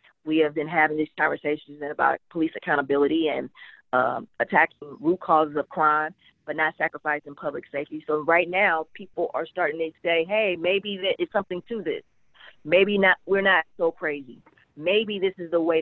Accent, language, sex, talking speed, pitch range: American, English, female, 175 wpm, 150-175 Hz